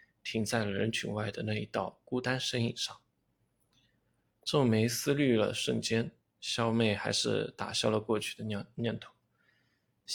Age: 20-39